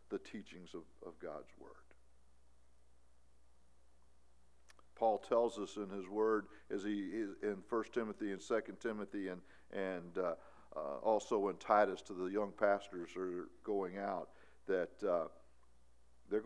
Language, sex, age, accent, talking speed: English, male, 50-69, American, 140 wpm